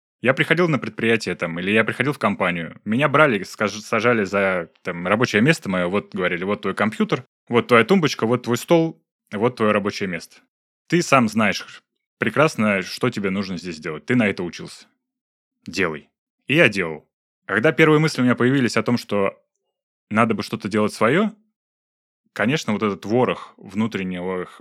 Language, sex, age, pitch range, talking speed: Russian, male, 20-39, 95-130 Hz, 165 wpm